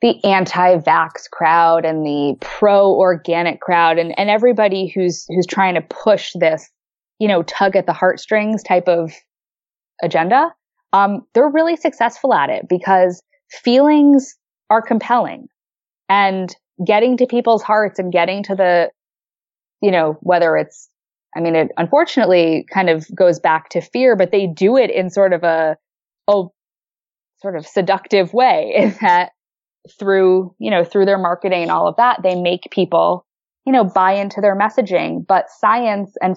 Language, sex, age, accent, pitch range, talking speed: English, female, 20-39, American, 170-220 Hz, 155 wpm